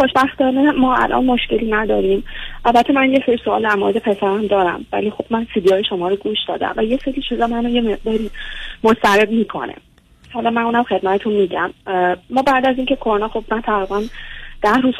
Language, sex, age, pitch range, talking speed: Persian, female, 30-49, 195-235 Hz, 180 wpm